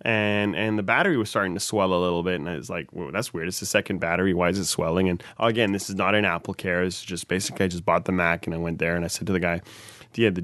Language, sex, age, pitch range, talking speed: English, male, 20-39, 95-120 Hz, 300 wpm